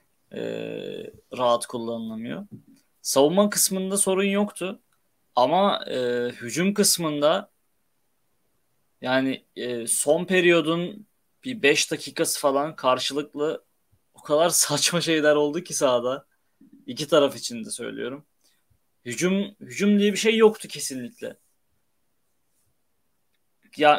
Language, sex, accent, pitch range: Turkish, male, native, 135-190 Hz